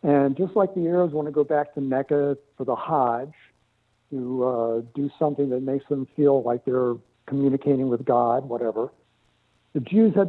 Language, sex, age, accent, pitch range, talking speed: English, male, 60-79, American, 130-175 Hz, 180 wpm